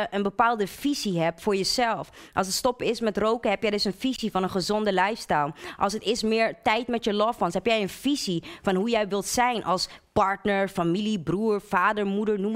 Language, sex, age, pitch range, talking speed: Dutch, female, 20-39, 195-230 Hz, 220 wpm